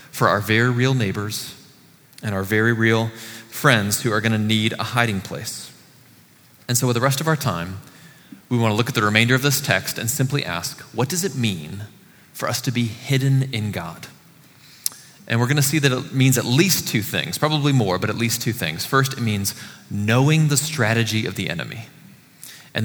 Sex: male